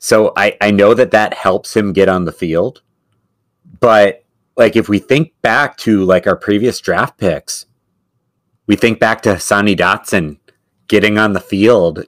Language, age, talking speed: English, 30-49, 170 wpm